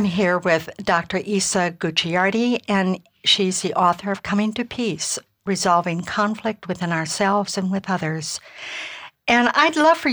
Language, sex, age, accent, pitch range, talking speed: English, female, 60-79, American, 170-205 Hz, 150 wpm